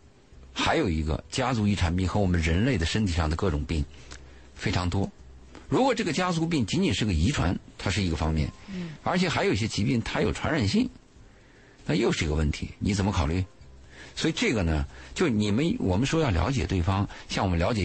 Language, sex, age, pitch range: Chinese, male, 50-69, 80-110 Hz